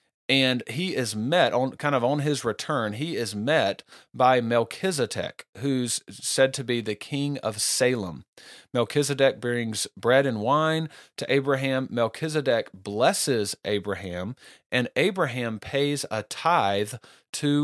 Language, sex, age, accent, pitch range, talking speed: English, male, 40-59, American, 110-135 Hz, 135 wpm